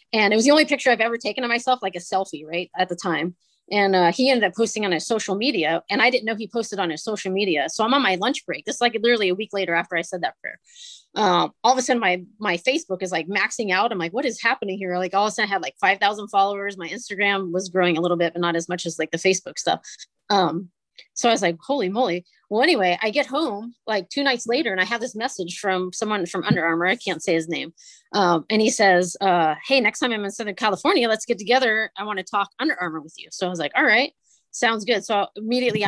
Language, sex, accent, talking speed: English, female, American, 275 wpm